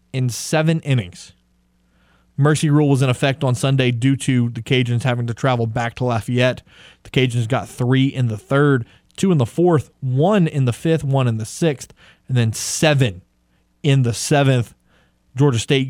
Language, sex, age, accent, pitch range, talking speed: English, male, 30-49, American, 115-140 Hz, 175 wpm